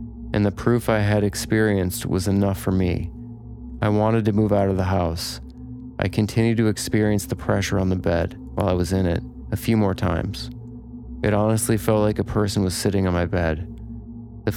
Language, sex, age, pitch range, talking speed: English, male, 30-49, 95-110 Hz, 200 wpm